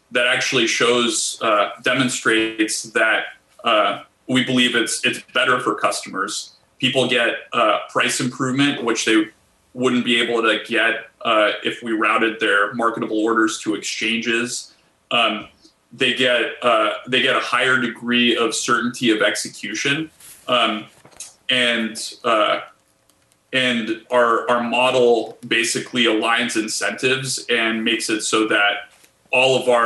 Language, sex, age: English, male, 30-49